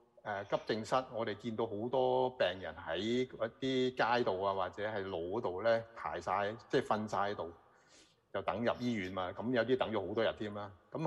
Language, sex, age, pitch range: Chinese, male, 30-49, 95-130 Hz